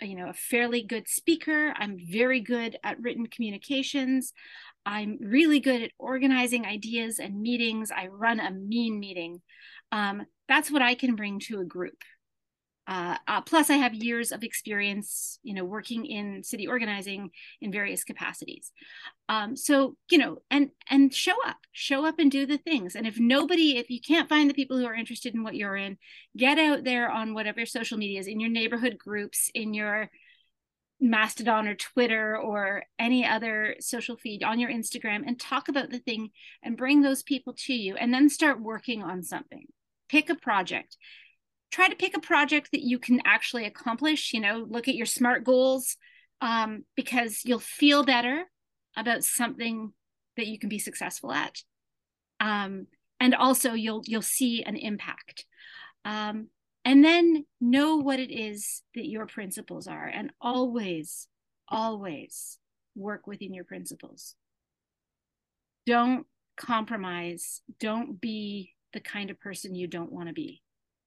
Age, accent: 40-59, American